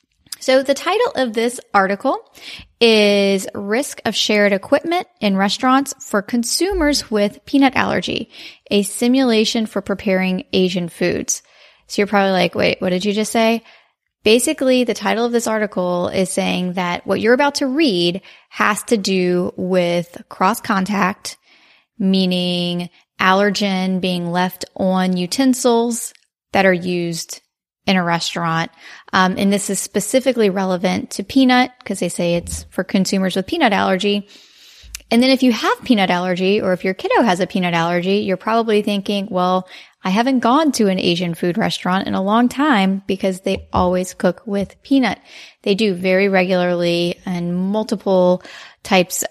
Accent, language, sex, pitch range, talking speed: American, English, female, 185-230 Hz, 155 wpm